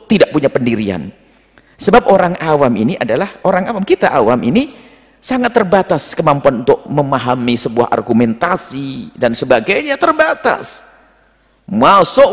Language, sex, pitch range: Indonesian, male, 170-245 Hz